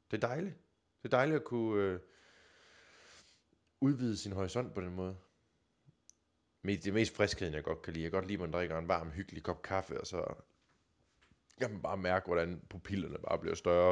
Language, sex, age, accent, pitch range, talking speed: English, male, 20-39, Danish, 90-125 Hz, 185 wpm